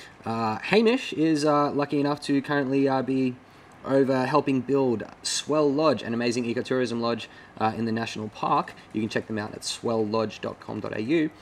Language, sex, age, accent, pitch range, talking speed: English, male, 20-39, Australian, 110-140 Hz, 165 wpm